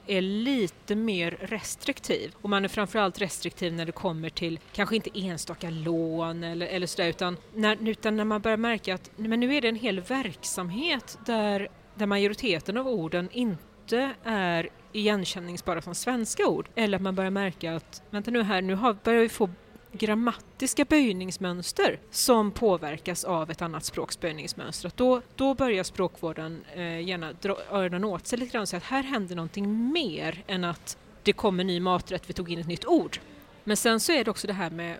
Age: 30-49